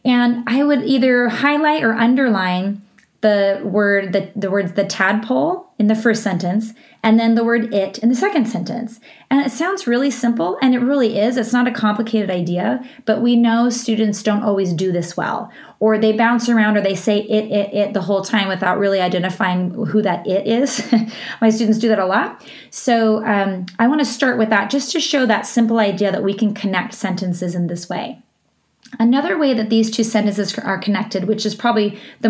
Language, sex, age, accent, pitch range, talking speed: English, female, 30-49, American, 200-240 Hz, 205 wpm